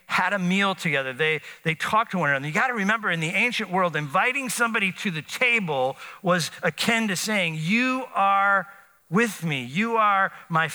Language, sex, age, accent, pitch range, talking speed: English, male, 40-59, American, 160-210 Hz, 185 wpm